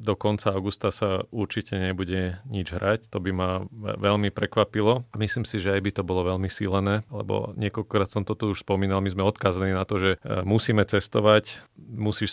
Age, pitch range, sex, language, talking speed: 40-59, 105-115 Hz, male, Slovak, 180 wpm